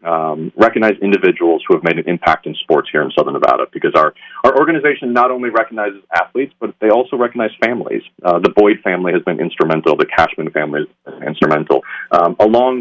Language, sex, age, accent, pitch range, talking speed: English, male, 40-59, American, 110-180 Hz, 195 wpm